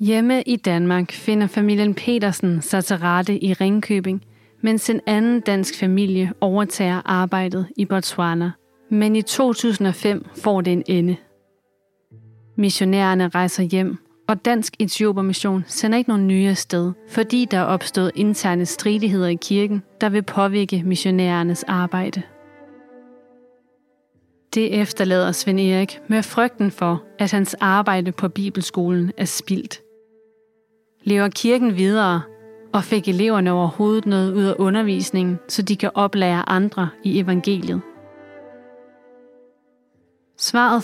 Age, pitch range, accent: 30-49, 180-215 Hz, native